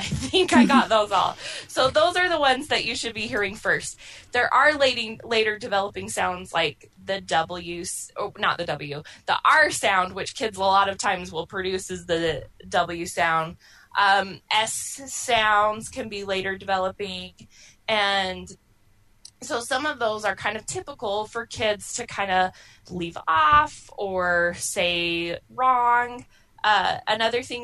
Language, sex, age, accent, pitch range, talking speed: English, female, 20-39, American, 180-230 Hz, 160 wpm